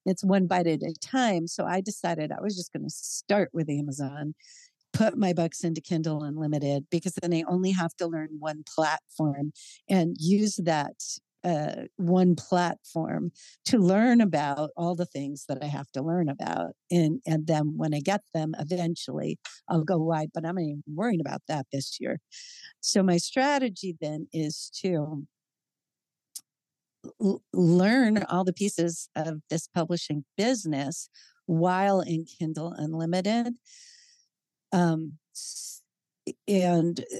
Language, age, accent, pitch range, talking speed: English, 50-69, American, 155-195 Hz, 145 wpm